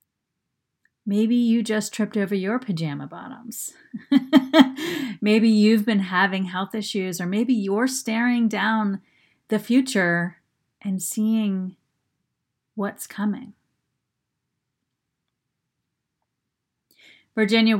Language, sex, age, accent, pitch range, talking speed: English, female, 30-49, American, 175-230 Hz, 90 wpm